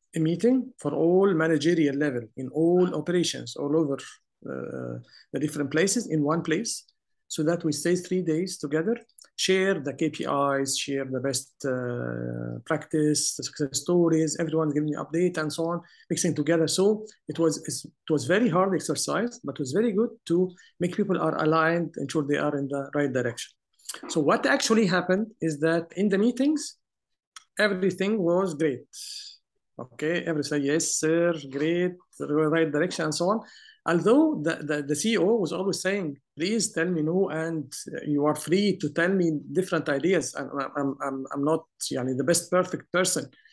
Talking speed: 175 wpm